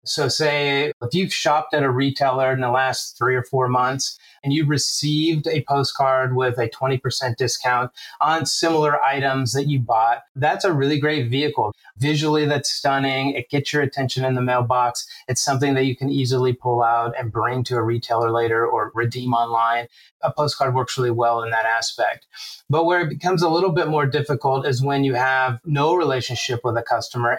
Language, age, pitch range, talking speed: English, 30-49, 120-145 Hz, 195 wpm